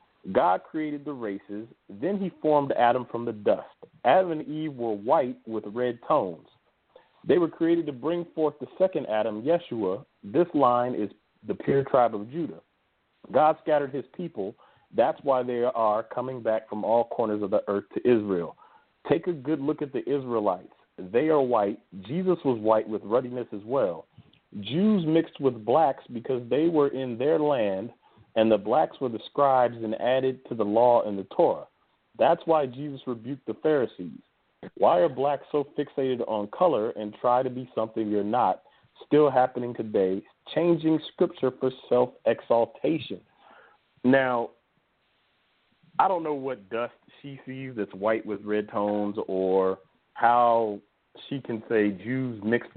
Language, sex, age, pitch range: English, male, 40-59, 110-145 Hz